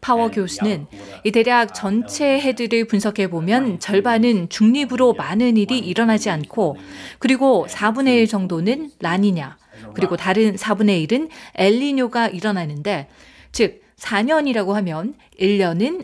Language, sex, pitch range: Korean, female, 190-250 Hz